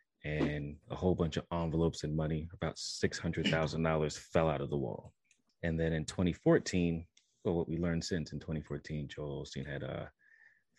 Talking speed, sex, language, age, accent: 165 wpm, male, English, 30-49, American